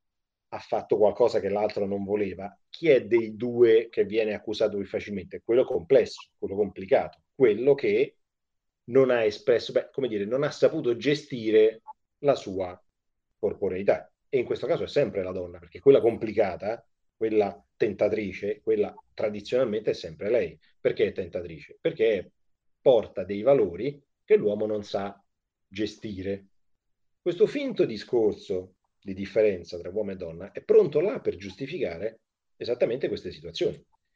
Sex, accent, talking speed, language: male, native, 145 wpm, Italian